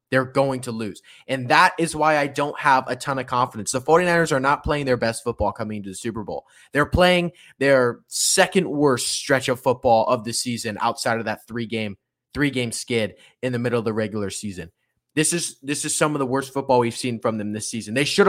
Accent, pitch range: American, 125-165 Hz